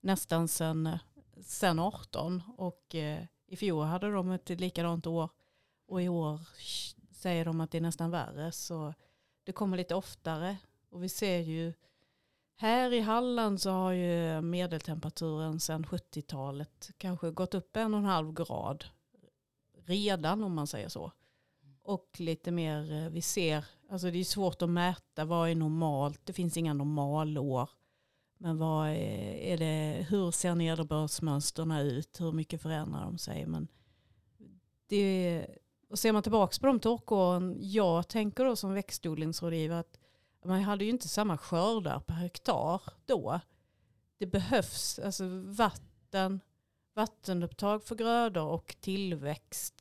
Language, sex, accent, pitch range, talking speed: Swedish, female, native, 155-190 Hz, 140 wpm